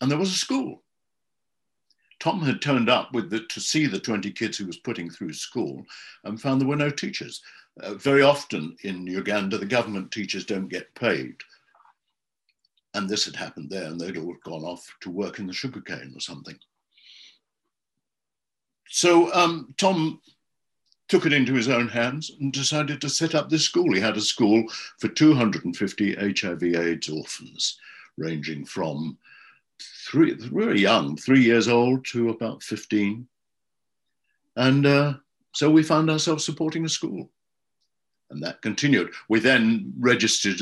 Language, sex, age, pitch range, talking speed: English, male, 60-79, 100-150 Hz, 160 wpm